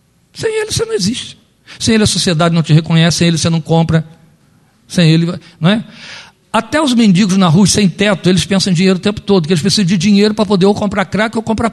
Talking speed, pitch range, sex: 240 wpm, 145-205 Hz, male